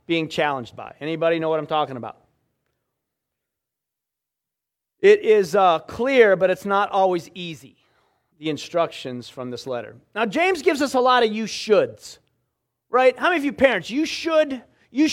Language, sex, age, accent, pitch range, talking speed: English, male, 30-49, American, 190-270 Hz, 165 wpm